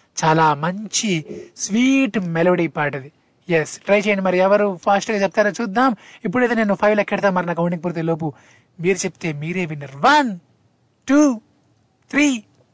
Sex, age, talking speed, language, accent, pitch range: male, 20-39, 135 wpm, Telugu, native, 175-220 Hz